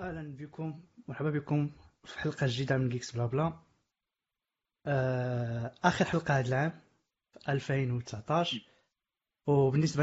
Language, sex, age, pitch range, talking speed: Arabic, male, 20-39, 125-150 Hz, 110 wpm